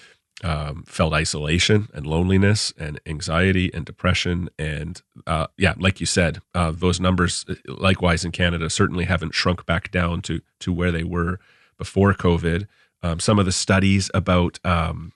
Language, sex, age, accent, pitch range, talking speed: English, male, 30-49, American, 85-100 Hz, 160 wpm